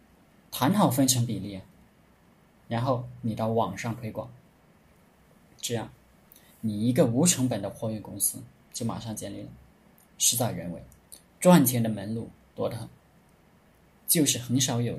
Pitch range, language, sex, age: 110-135 Hz, Chinese, male, 20-39